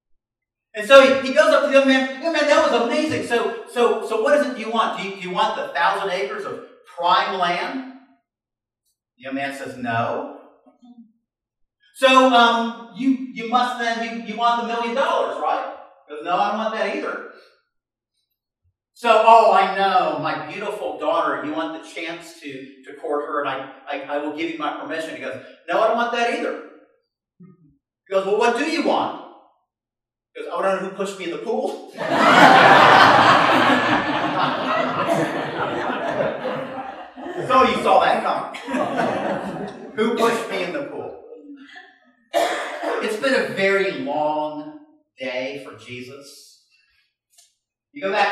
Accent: American